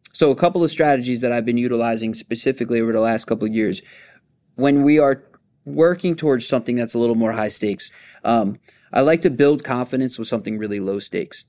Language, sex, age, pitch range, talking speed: English, male, 20-39, 110-135 Hz, 205 wpm